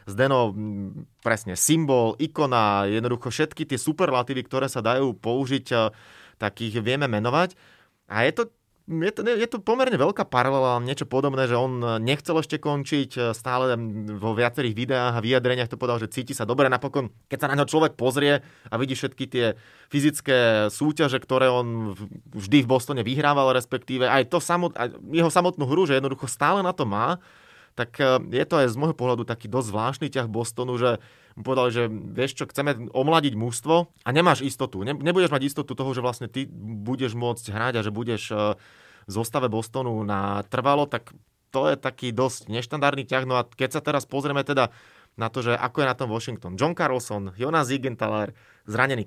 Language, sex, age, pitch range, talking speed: Slovak, male, 20-39, 115-145 Hz, 175 wpm